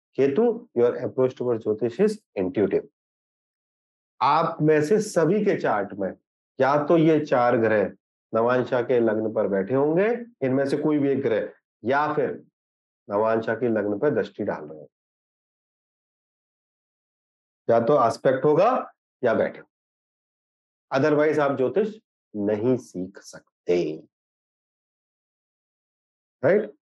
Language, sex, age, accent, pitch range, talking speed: Hindi, male, 40-59, native, 125-160 Hz, 115 wpm